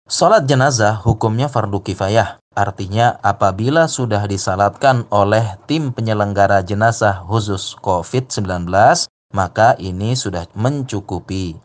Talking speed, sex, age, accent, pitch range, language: 100 wpm, male, 30-49, native, 100-130 Hz, Indonesian